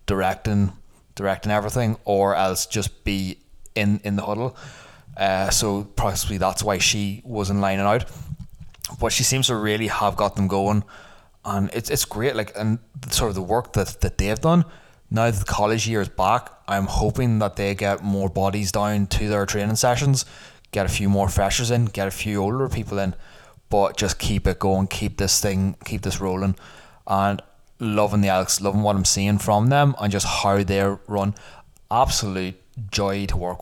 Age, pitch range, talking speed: 20-39, 95-110 Hz, 185 wpm